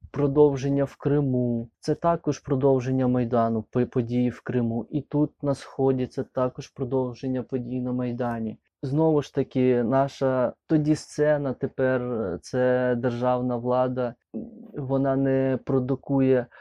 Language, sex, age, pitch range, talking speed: Ukrainian, male, 20-39, 125-145 Hz, 120 wpm